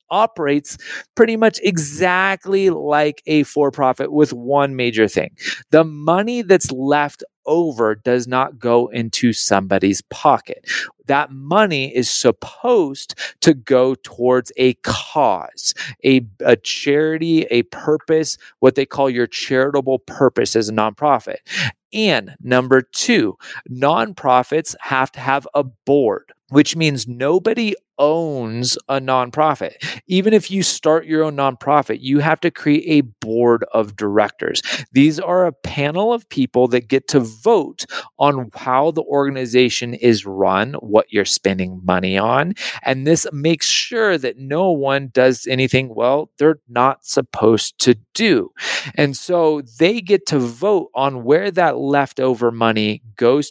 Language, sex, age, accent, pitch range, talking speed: English, male, 30-49, American, 125-155 Hz, 140 wpm